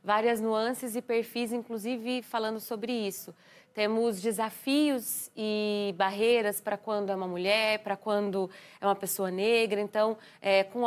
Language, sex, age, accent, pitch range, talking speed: Portuguese, female, 20-39, Brazilian, 200-235 Hz, 140 wpm